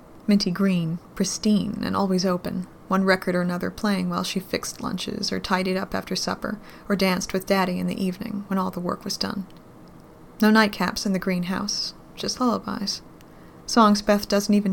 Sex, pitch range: female, 185-205 Hz